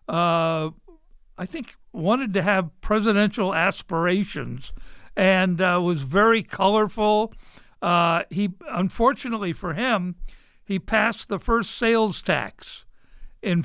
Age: 60-79